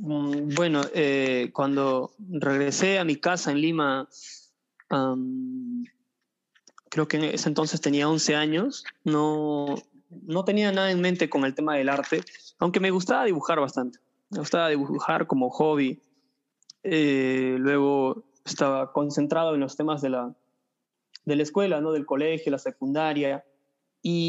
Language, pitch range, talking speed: English, 140-170 Hz, 140 wpm